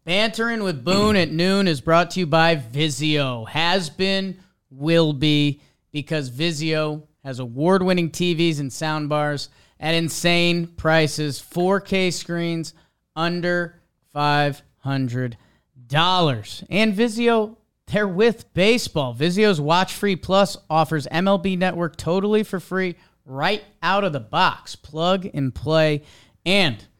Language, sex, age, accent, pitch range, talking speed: English, male, 30-49, American, 135-180 Hz, 120 wpm